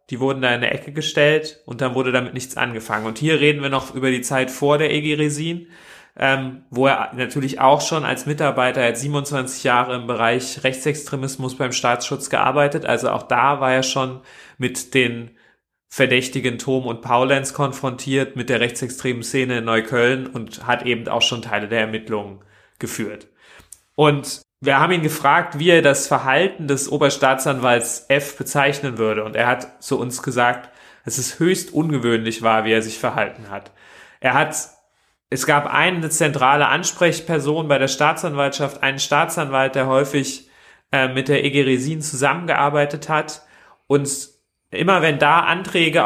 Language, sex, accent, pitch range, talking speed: German, male, German, 125-150 Hz, 165 wpm